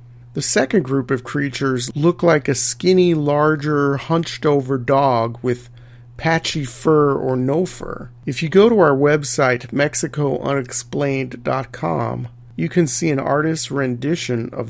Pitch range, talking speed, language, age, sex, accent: 120-155 Hz, 130 wpm, English, 40-59, male, American